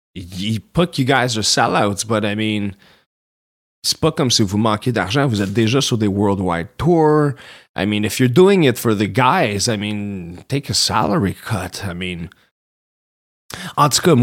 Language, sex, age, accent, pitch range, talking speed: French, male, 30-49, Canadian, 100-125 Hz, 180 wpm